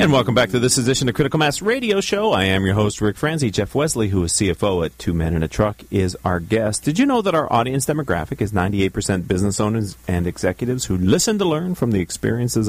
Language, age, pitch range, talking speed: English, 40-59, 95-135 Hz, 240 wpm